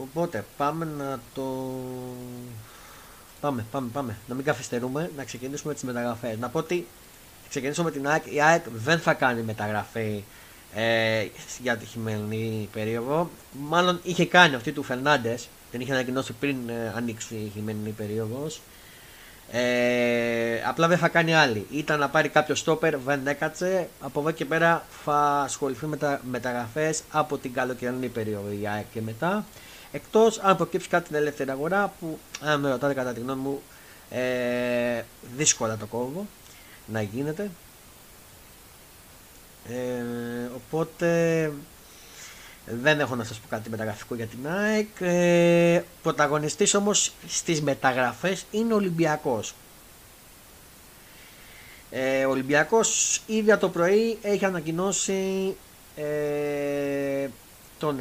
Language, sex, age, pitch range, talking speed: Greek, male, 30-49, 120-165 Hz, 130 wpm